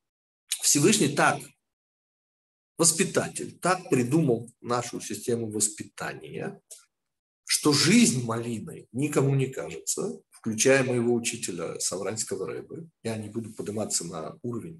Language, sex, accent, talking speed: Russian, male, native, 100 wpm